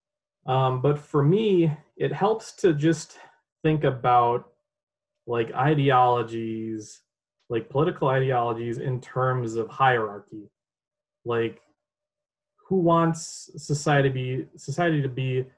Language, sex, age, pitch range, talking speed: English, male, 20-39, 120-145 Hz, 100 wpm